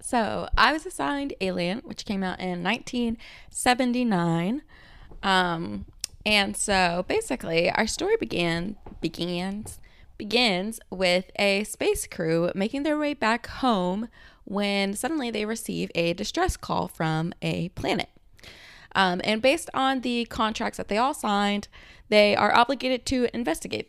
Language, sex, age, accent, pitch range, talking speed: English, female, 20-39, American, 175-250 Hz, 135 wpm